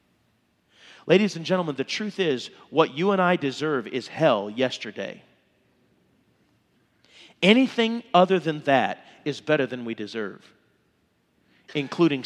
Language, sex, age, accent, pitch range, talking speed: English, male, 40-59, American, 140-175 Hz, 115 wpm